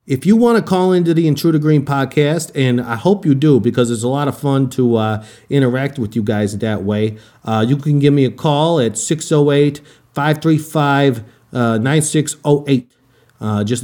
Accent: American